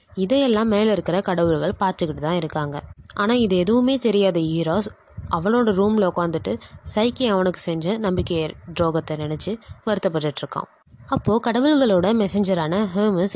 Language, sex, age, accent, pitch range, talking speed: Tamil, female, 20-39, native, 170-230 Hz, 120 wpm